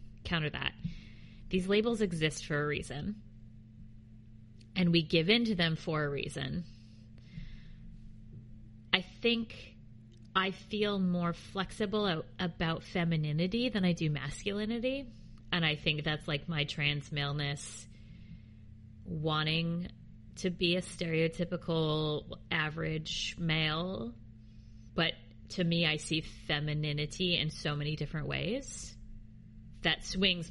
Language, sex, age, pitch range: English, female, 30-49, 115-175 Hz